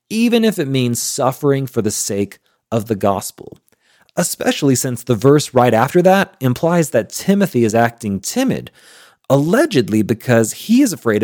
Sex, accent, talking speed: male, American, 155 wpm